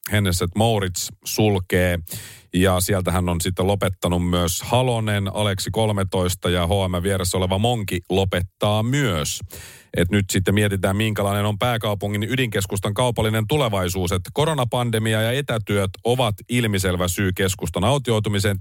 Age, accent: 40-59, native